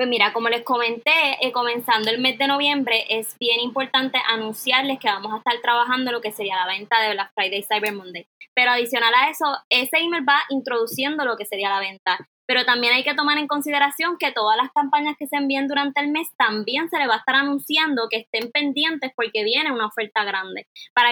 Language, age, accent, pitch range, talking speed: Spanish, 20-39, American, 225-285 Hz, 215 wpm